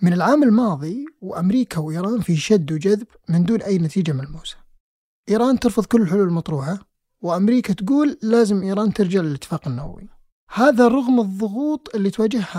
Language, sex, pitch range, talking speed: Arabic, male, 170-235 Hz, 145 wpm